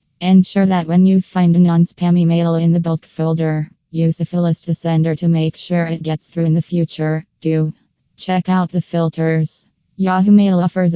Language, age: English, 20-39